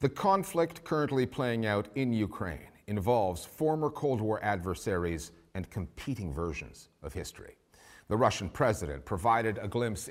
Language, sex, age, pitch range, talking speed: English, male, 40-59, 100-135 Hz, 135 wpm